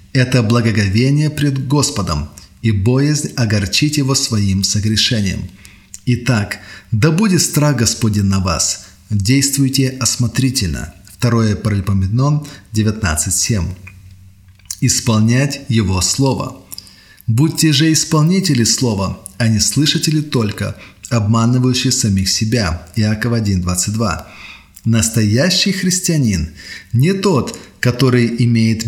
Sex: male